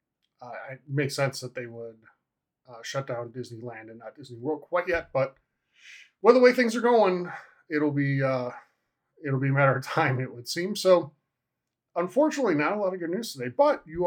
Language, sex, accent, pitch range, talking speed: English, male, American, 135-175 Hz, 200 wpm